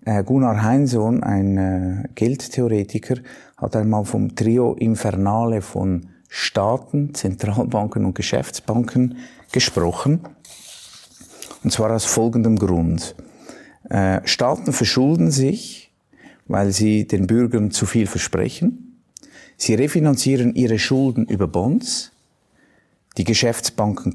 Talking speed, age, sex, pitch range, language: 95 wpm, 50-69, male, 105-135 Hz, German